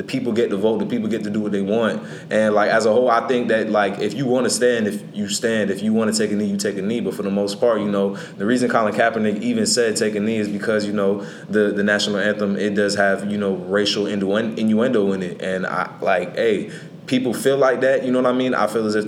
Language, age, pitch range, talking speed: English, 20-39, 100-115 Hz, 285 wpm